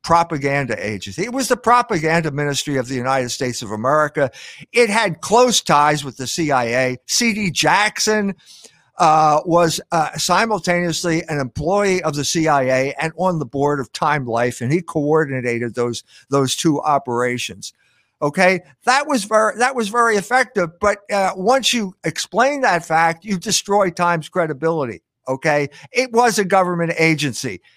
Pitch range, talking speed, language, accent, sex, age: 145-195 Hz, 150 wpm, English, American, male, 50-69